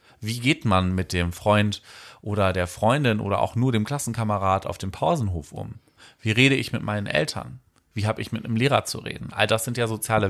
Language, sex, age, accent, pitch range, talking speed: German, male, 40-59, German, 100-135 Hz, 215 wpm